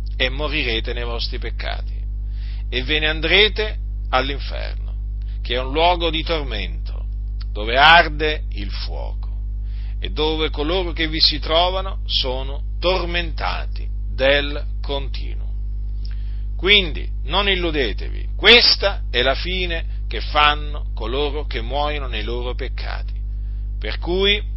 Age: 40-59